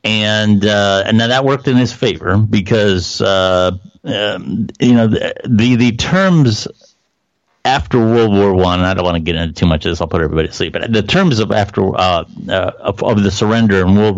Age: 50-69